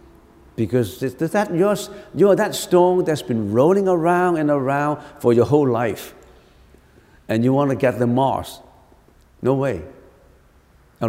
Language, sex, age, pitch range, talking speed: English, male, 60-79, 100-155 Hz, 145 wpm